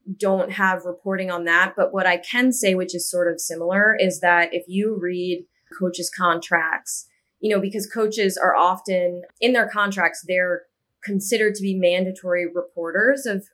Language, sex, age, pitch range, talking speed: English, female, 20-39, 175-205 Hz, 170 wpm